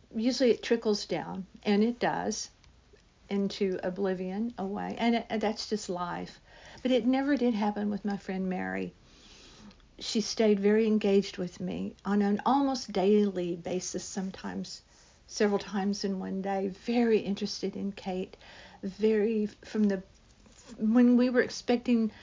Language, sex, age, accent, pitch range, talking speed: English, female, 60-79, American, 190-220 Hz, 140 wpm